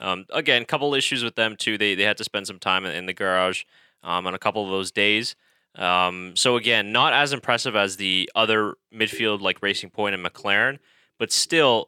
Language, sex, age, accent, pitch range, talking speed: English, male, 10-29, American, 95-120 Hz, 215 wpm